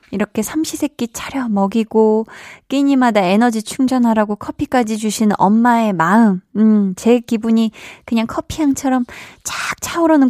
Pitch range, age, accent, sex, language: 190-260 Hz, 20-39, native, female, Korean